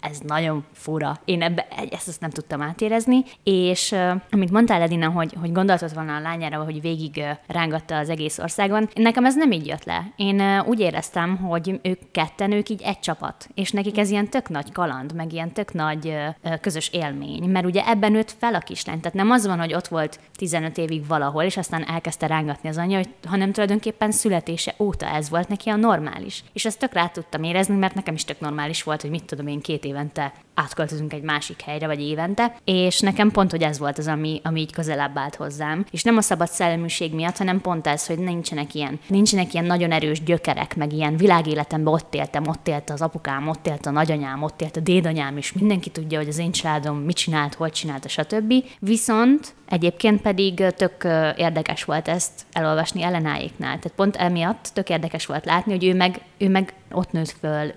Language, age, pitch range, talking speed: Hungarian, 20-39, 155-195 Hz, 210 wpm